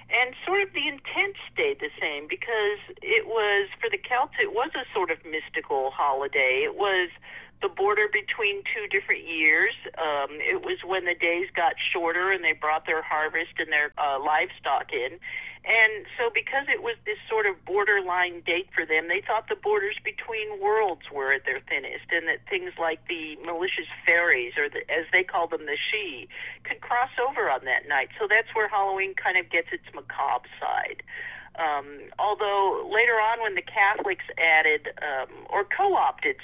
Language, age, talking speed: English, 50-69, 185 wpm